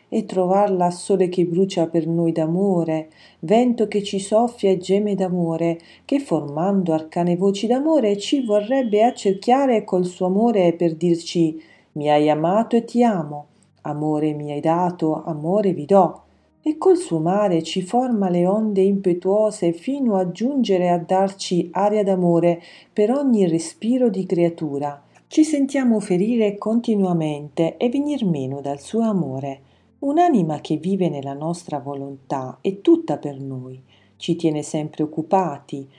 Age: 40-59